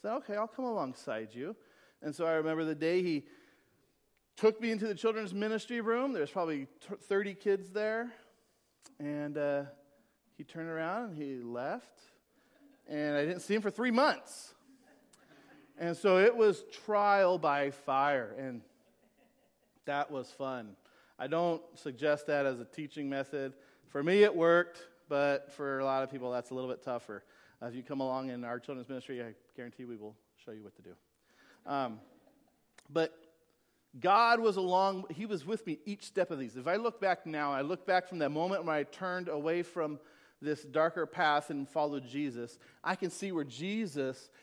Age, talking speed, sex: 40-59, 175 wpm, male